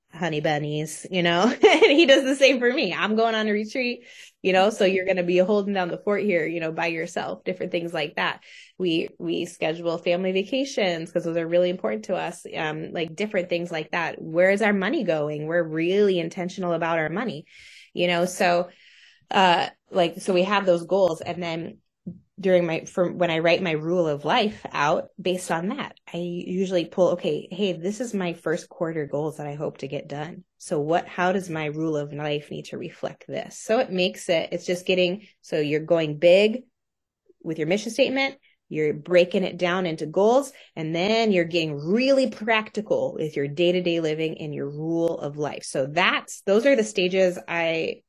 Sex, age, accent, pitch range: female, 20-39, American, 160-200 Hz